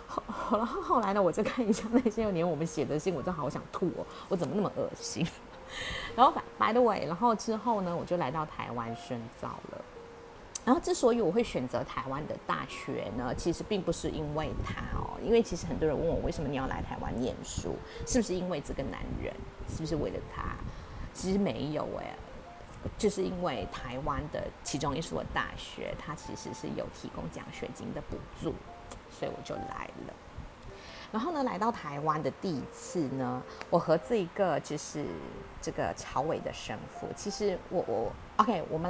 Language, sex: Chinese, female